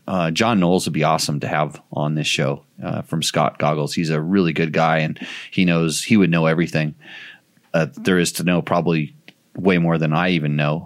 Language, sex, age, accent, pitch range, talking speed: English, male, 30-49, American, 85-105 Hz, 220 wpm